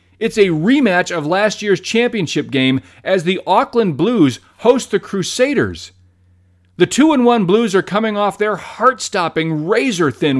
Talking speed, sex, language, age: 140 wpm, male, English, 40-59